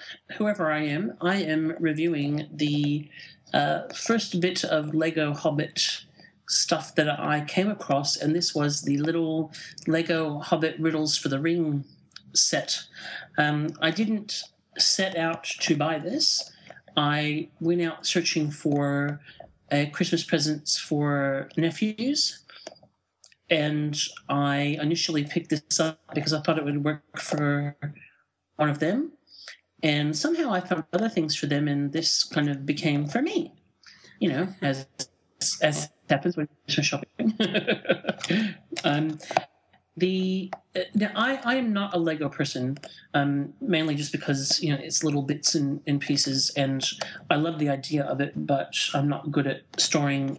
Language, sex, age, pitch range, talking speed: English, male, 50-69, 145-170 Hz, 140 wpm